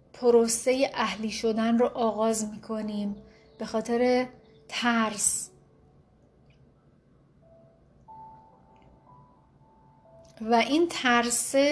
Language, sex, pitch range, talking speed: Persian, female, 215-255 Hz, 65 wpm